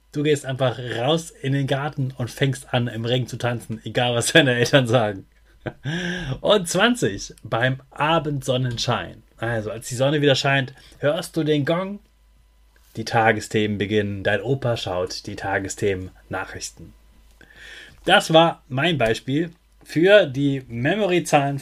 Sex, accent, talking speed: male, German, 135 wpm